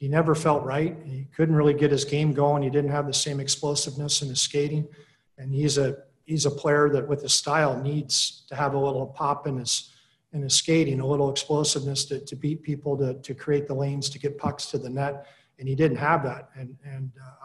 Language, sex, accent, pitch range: English, male, American, 135-145 Hz